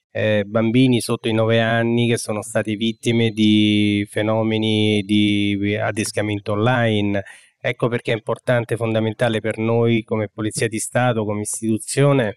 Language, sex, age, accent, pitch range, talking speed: Italian, male, 20-39, native, 110-120 Hz, 140 wpm